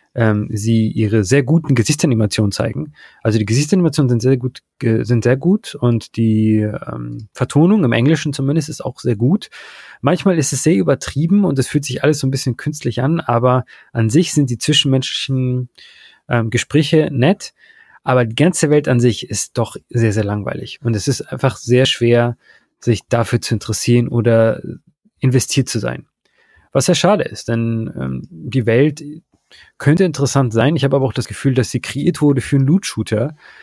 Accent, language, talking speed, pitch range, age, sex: German, German, 180 wpm, 115-145 Hz, 30-49, male